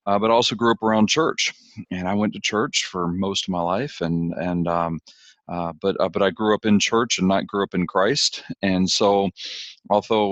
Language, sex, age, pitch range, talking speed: English, male, 40-59, 95-105 Hz, 220 wpm